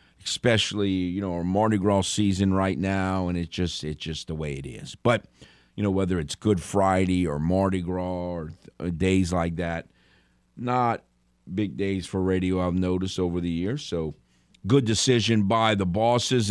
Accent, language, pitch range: American, English, 95-130 Hz